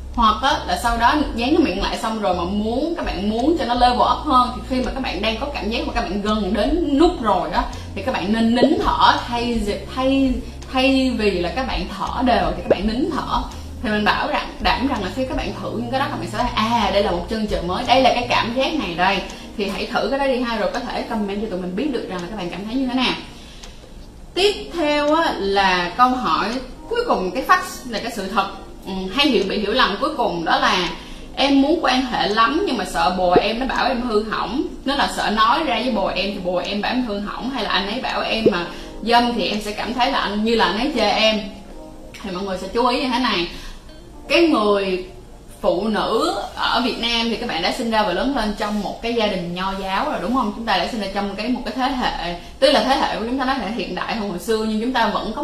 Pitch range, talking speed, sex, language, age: 200-265 Hz, 275 wpm, female, Vietnamese, 20-39